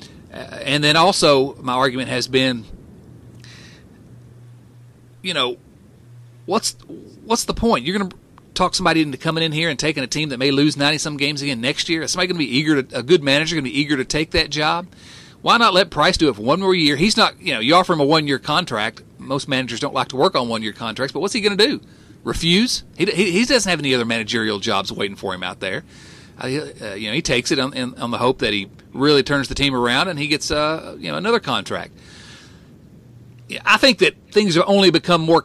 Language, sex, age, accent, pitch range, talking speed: English, male, 40-59, American, 130-180 Hz, 230 wpm